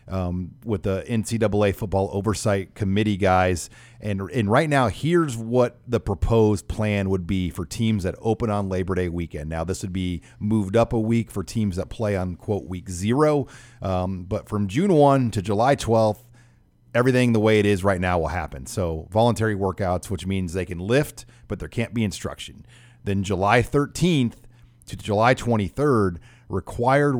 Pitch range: 95-120 Hz